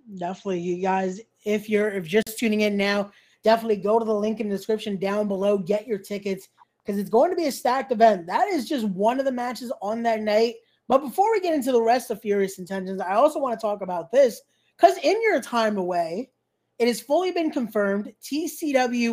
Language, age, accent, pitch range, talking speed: English, 20-39, American, 205-270 Hz, 215 wpm